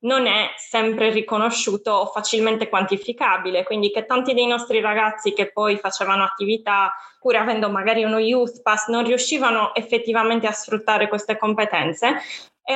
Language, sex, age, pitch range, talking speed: Italian, female, 20-39, 200-235 Hz, 145 wpm